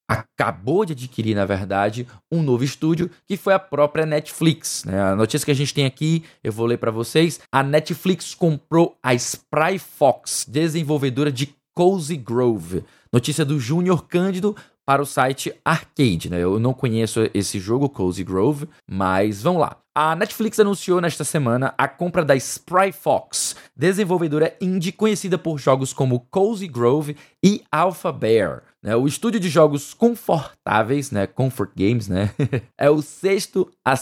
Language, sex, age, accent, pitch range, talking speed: Portuguese, male, 20-39, Brazilian, 120-170 Hz, 155 wpm